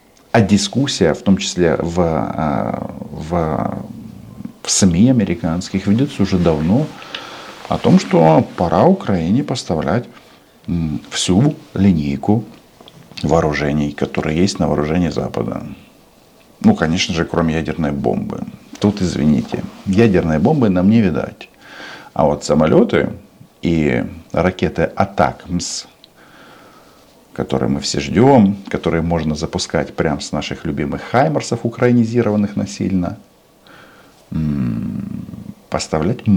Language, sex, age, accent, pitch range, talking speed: Russian, male, 50-69, native, 80-110 Hz, 100 wpm